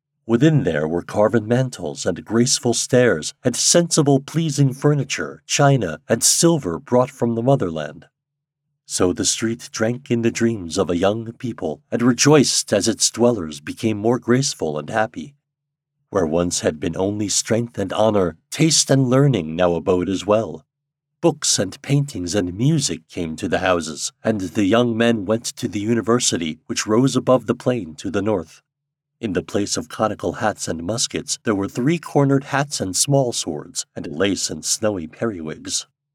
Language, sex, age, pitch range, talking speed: English, male, 50-69, 110-140 Hz, 170 wpm